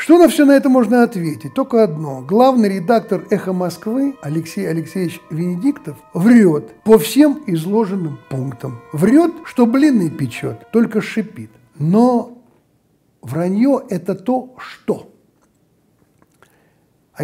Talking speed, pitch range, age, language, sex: 115 wpm, 155-225 Hz, 60-79, Russian, male